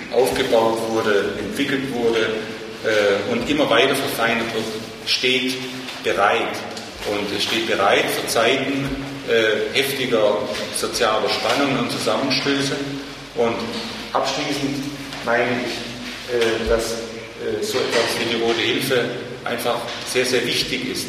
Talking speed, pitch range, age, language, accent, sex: 120 wpm, 115-135 Hz, 40-59, German, German, male